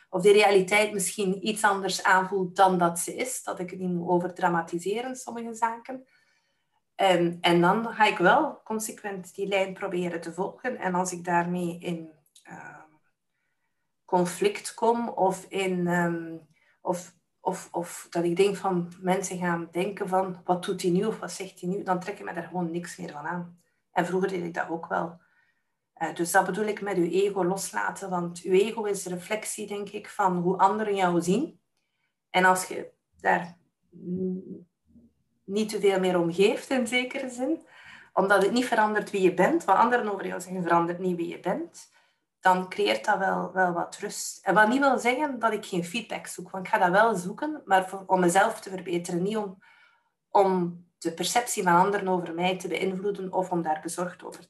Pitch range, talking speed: 180-210 Hz, 190 wpm